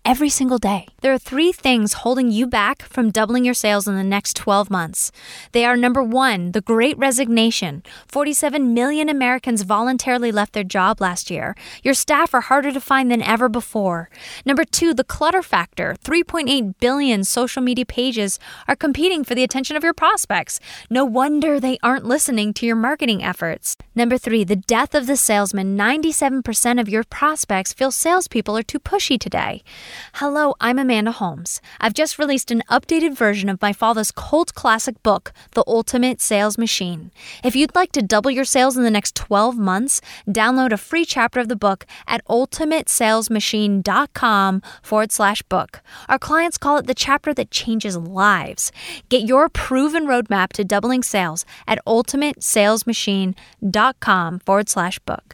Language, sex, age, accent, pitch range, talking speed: English, female, 10-29, American, 210-275 Hz, 165 wpm